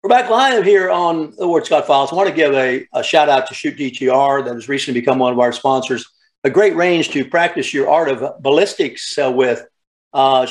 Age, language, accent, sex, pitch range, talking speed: 60-79, English, American, male, 120-140 Hz, 225 wpm